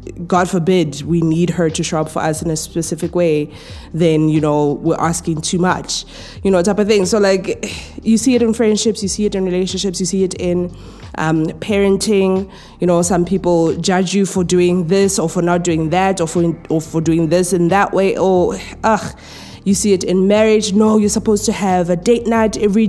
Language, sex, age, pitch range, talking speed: English, female, 20-39, 165-200 Hz, 220 wpm